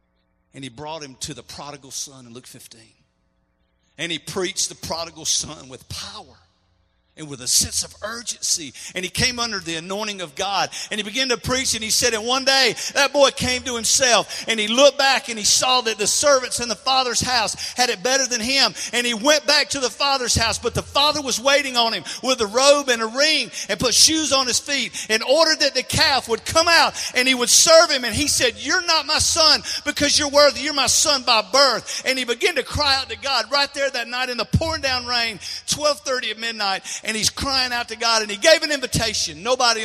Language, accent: English, American